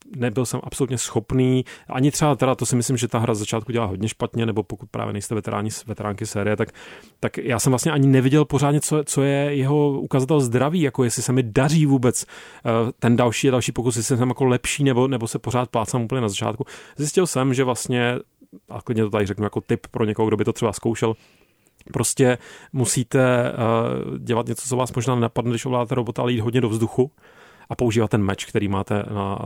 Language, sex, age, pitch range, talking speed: Czech, male, 30-49, 110-130 Hz, 210 wpm